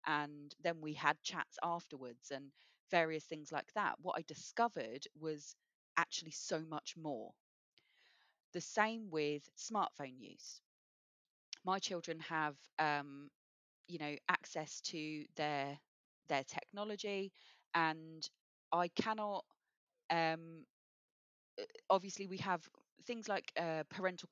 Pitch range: 145-175 Hz